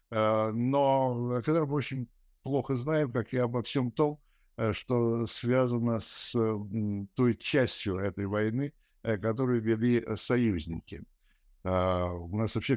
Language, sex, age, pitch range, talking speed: Russian, male, 60-79, 100-120 Hz, 115 wpm